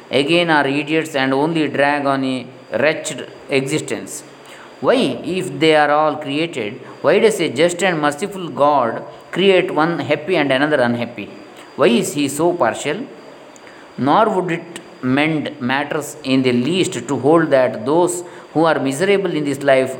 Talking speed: 155 wpm